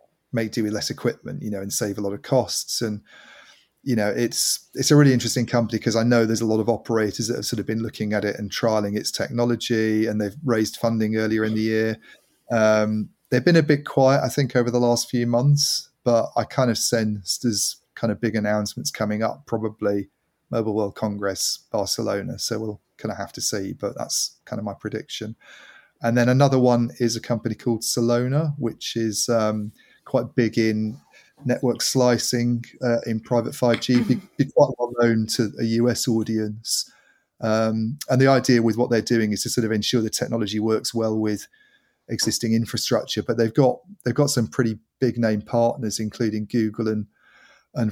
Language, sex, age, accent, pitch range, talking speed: English, male, 30-49, British, 110-120 Hz, 195 wpm